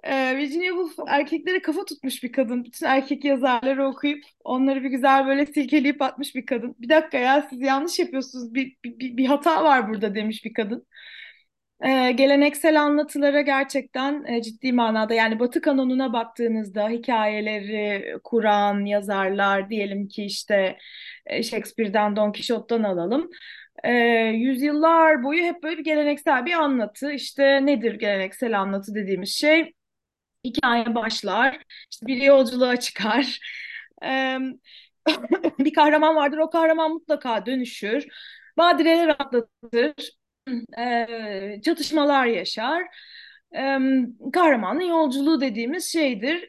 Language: Turkish